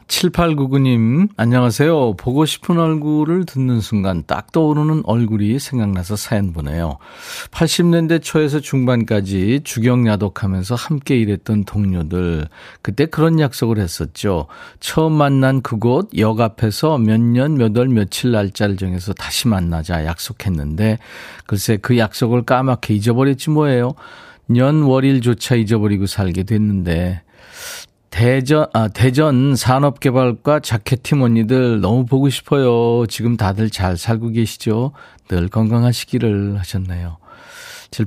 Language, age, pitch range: Korean, 40-59, 105-135 Hz